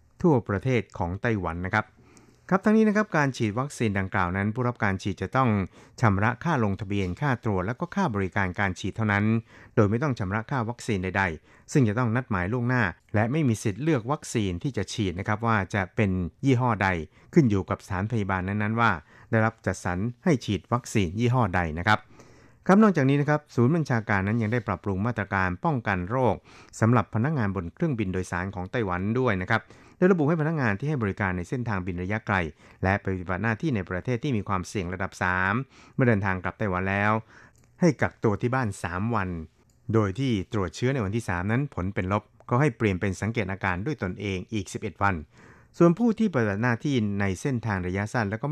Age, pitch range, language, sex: 60-79, 95-125 Hz, Thai, male